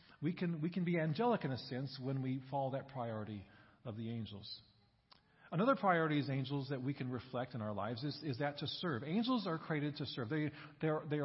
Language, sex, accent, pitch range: English, male, American, 125-165 Hz